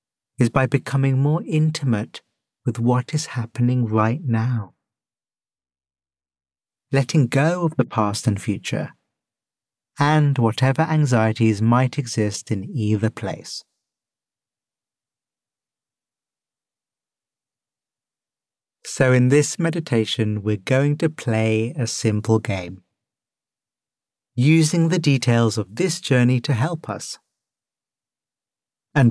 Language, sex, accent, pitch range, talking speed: English, male, British, 110-140 Hz, 95 wpm